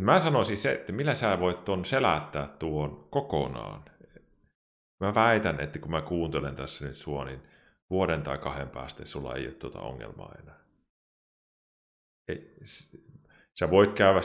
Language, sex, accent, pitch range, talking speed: Finnish, male, native, 70-90 Hz, 145 wpm